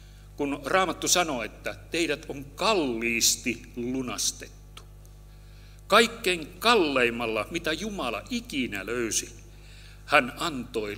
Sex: male